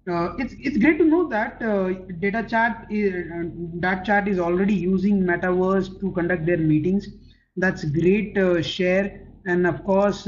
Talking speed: 165 wpm